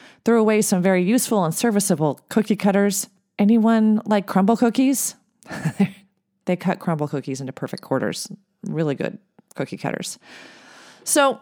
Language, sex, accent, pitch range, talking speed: English, female, American, 175-225 Hz, 130 wpm